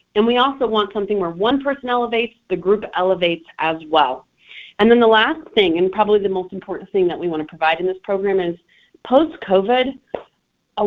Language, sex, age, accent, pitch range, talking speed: English, female, 30-49, American, 155-215 Hz, 200 wpm